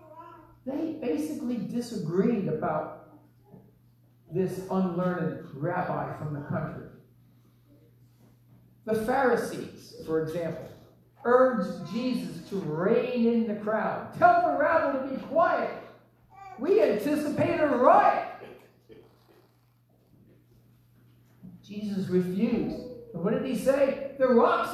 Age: 50-69